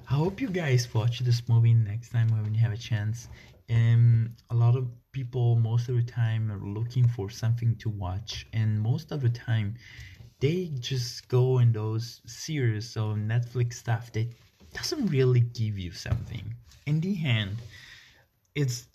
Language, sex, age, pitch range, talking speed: English, male, 20-39, 110-125 Hz, 170 wpm